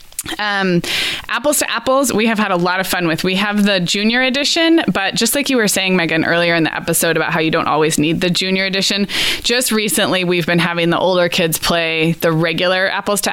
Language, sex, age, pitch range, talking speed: English, female, 20-39, 175-220 Hz, 225 wpm